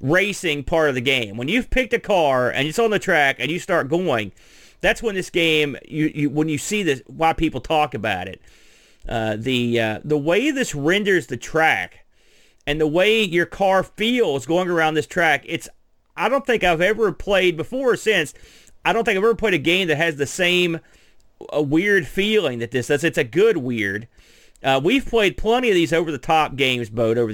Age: 40-59